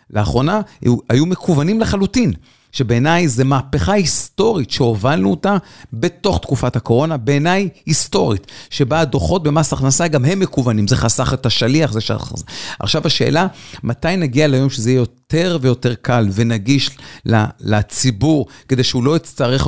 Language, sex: Hebrew, male